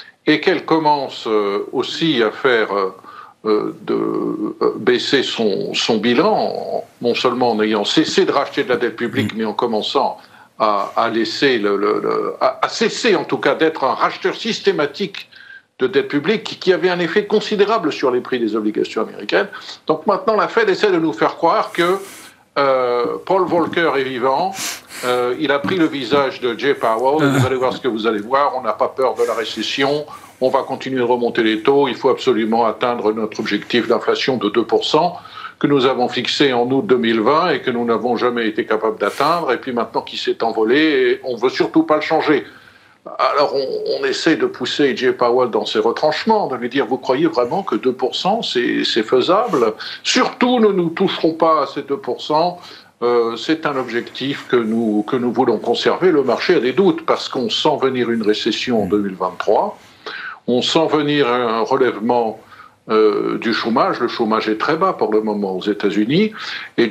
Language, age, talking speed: French, 60-79, 195 wpm